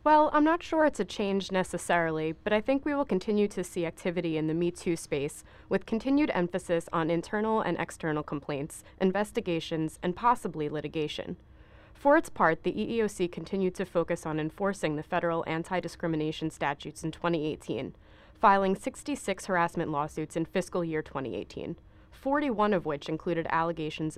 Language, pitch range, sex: English, 160-200 Hz, female